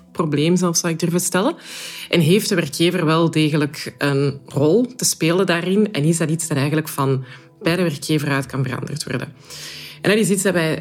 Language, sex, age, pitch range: Dutch, female, 20-39, 150-185 Hz